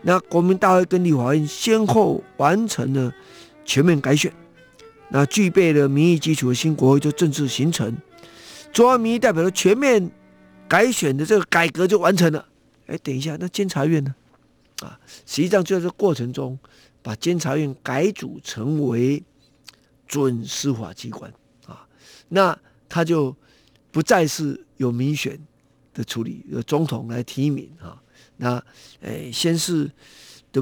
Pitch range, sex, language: 135-185 Hz, male, Chinese